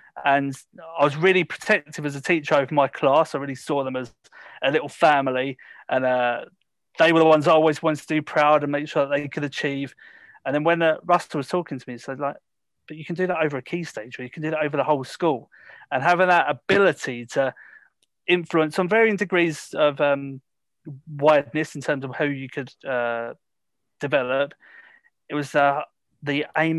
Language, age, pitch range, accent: English, 30-49, 130-155 Hz, British